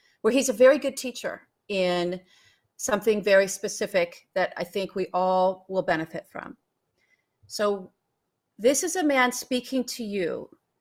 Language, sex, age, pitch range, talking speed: English, female, 40-59, 180-245 Hz, 145 wpm